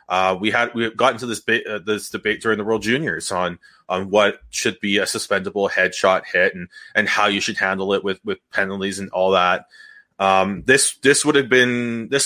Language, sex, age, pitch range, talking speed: English, male, 20-39, 100-130 Hz, 220 wpm